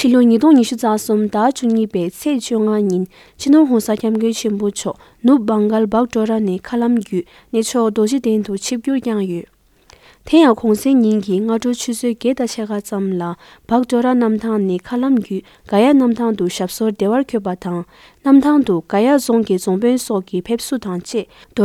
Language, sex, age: English, female, 20-39